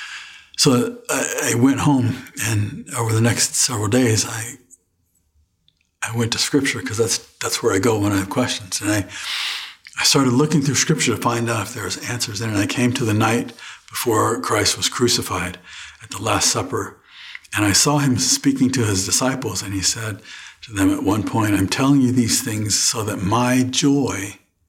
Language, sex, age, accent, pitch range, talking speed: English, male, 60-79, American, 100-130 Hz, 190 wpm